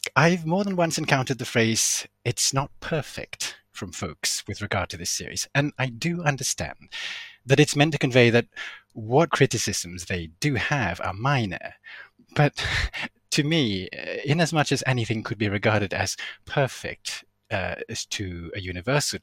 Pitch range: 105-145 Hz